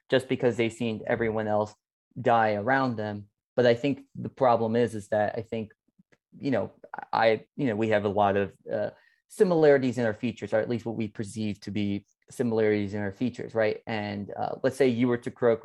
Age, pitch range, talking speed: 20-39, 105-125 Hz, 210 wpm